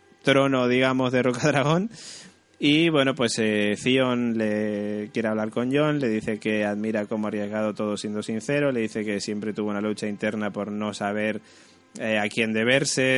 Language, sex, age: Spanish, male, 20-39